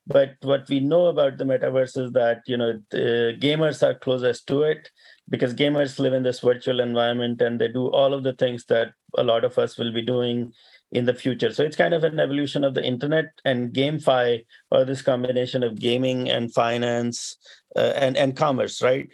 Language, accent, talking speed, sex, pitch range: English, Indian, 200 wpm, male, 120-145 Hz